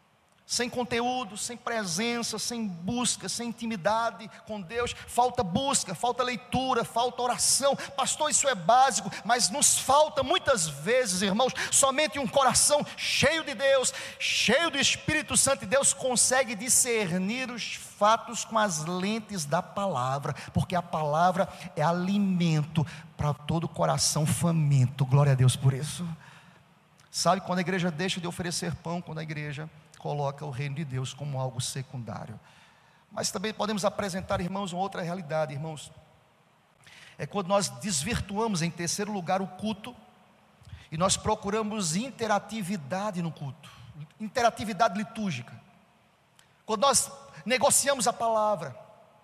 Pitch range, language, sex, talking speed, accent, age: 165-245 Hz, Portuguese, male, 135 wpm, Brazilian, 40-59